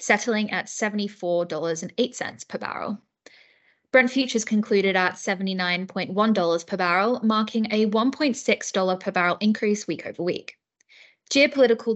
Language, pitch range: English, 190-230 Hz